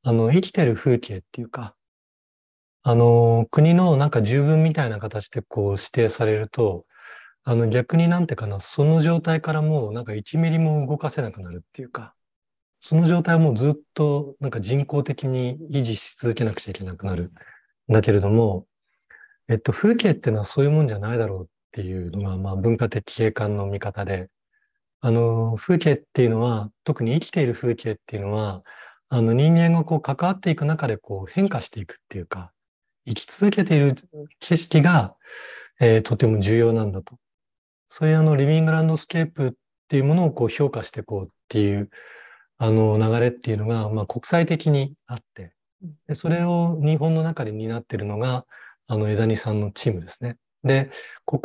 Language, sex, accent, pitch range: Japanese, male, native, 105-150 Hz